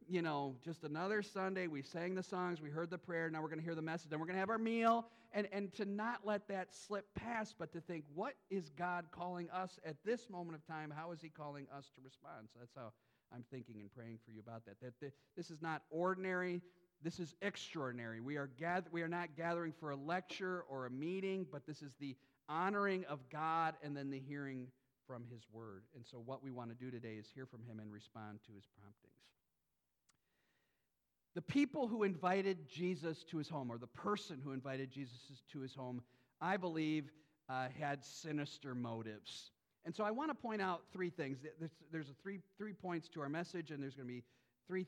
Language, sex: English, male